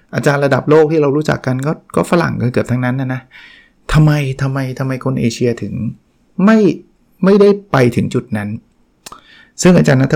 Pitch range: 120-150 Hz